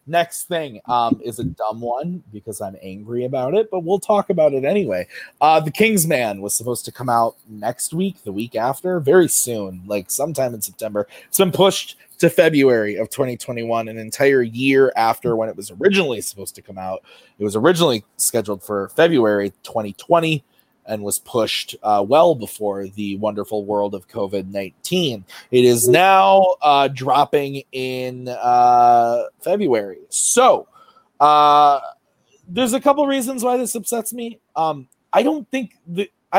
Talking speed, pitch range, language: 165 wpm, 115-185 Hz, English